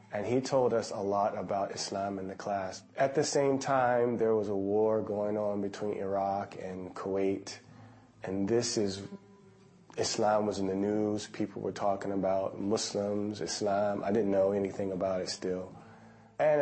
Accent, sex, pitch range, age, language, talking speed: American, male, 100-110 Hz, 30-49, English, 170 wpm